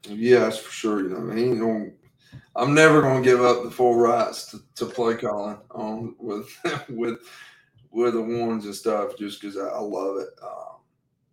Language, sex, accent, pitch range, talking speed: English, male, American, 105-120 Hz, 185 wpm